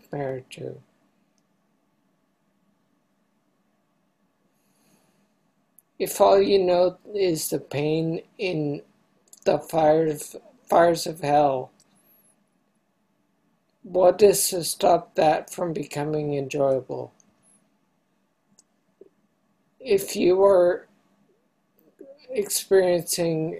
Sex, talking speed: male, 65 wpm